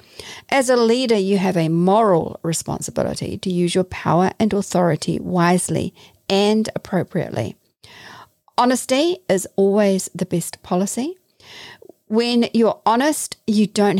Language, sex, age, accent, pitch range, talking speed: English, female, 50-69, Australian, 170-220 Hz, 120 wpm